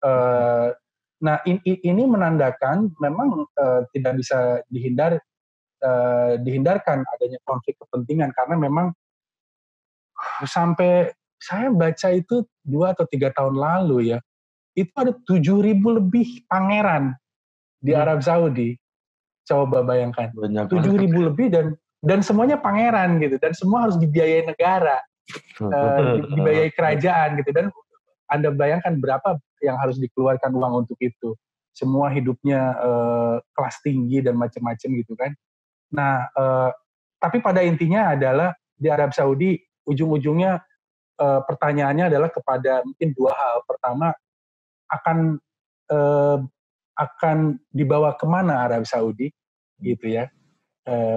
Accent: native